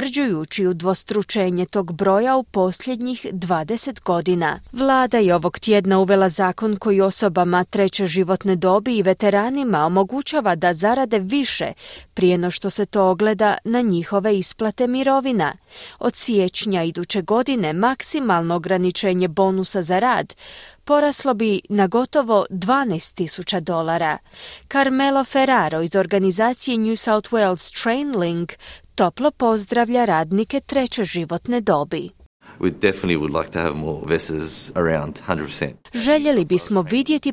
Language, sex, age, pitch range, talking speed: Croatian, female, 30-49, 180-245 Hz, 110 wpm